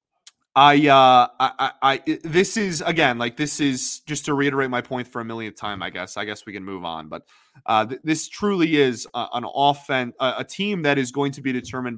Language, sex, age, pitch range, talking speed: English, male, 30-49, 115-145 Hz, 215 wpm